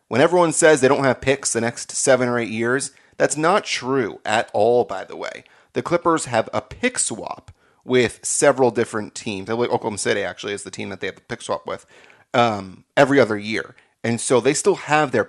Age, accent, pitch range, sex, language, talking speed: 30-49, American, 105-130 Hz, male, English, 210 wpm